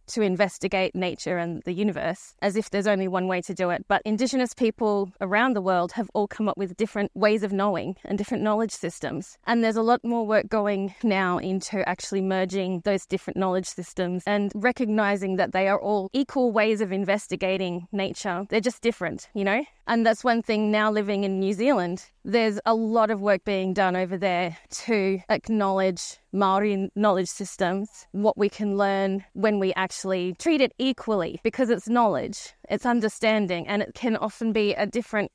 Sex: female